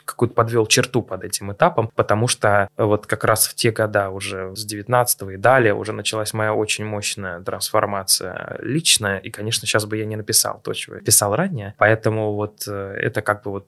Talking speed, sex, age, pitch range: 195 wpm, male, 20-39, 105-115 Hz